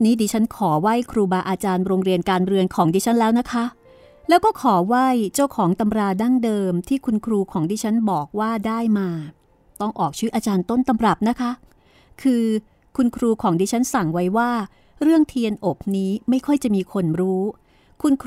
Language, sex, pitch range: Thai, female, 190-230 Hz